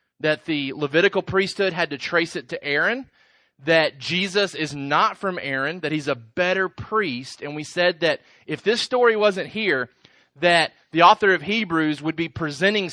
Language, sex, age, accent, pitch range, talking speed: English, male, 30-49, American, 130-165 Hz, 175 wpm